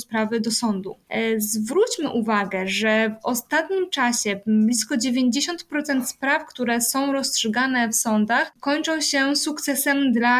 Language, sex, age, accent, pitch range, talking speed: Polish, female, 20-39, native, 220-255 Hz, 120 wpm